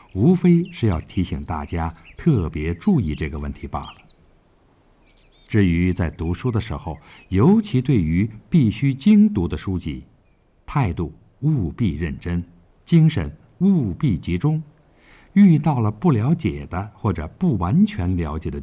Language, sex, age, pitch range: Chinese, male, 50-69, 85-135 Hz